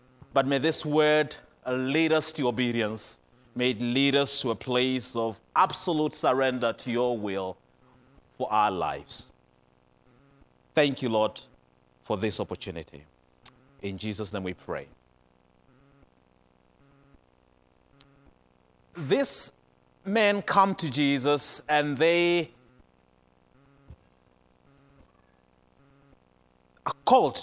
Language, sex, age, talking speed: English, male, 30-49, 95 wpm